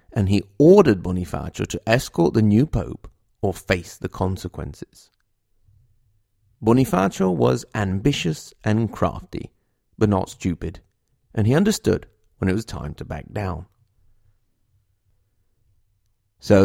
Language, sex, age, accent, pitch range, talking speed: English, male, 40-59, British, 95-115 Hz, 115 wpm